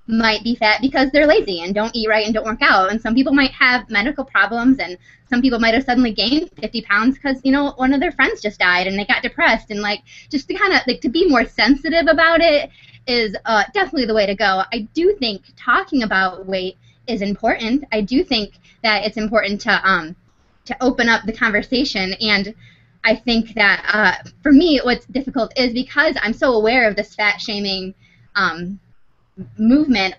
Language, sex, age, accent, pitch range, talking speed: English, female, 20-39, American, 190-245 Hz, 205 wpm